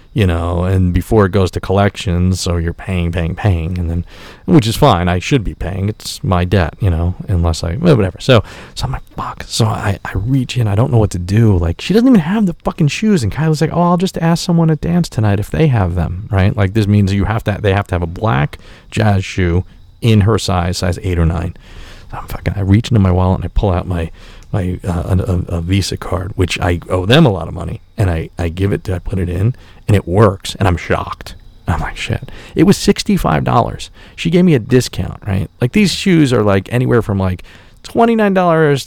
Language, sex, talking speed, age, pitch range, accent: English, male, 240 wpm, 40-59, 90-135 Hz, American